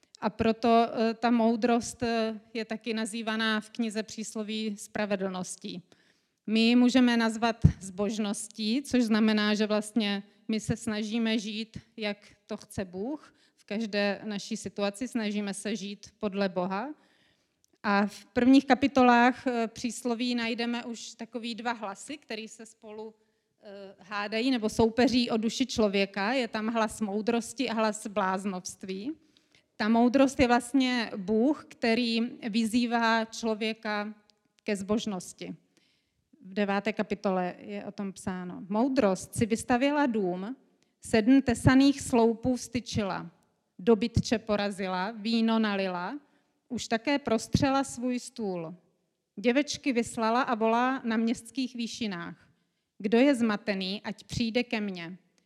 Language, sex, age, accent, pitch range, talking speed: Czech, female, 30-49, native, 205-240 Hz, 120 wpm